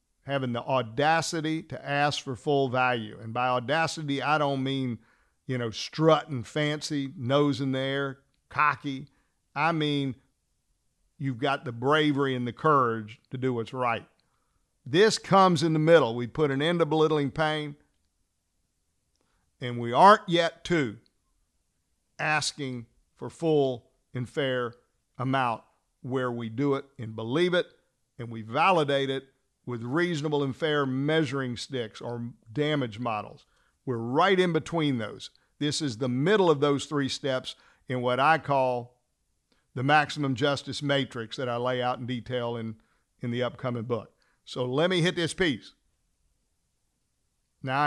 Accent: American